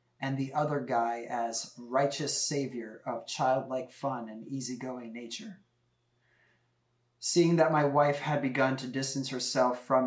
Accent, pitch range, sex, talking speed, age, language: American, 120-135 Hz, male, 135 wpm, 20-39, English